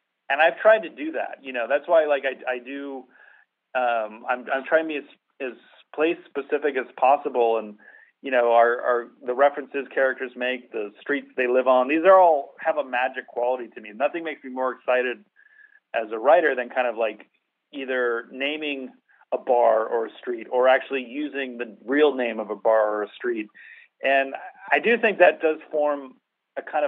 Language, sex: English, male